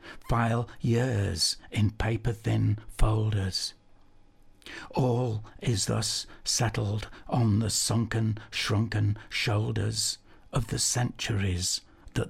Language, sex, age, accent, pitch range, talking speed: English, male, 60-79, British, 100-110 Hz, 90 wpm